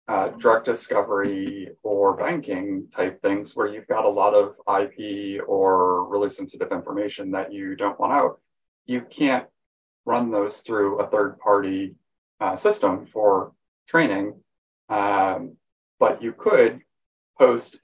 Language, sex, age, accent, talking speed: English, male, 30-49, American, 130 wpm